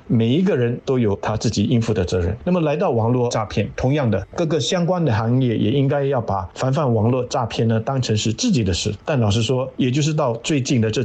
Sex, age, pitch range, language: male, 50-69, 110-135 Hz, Chinese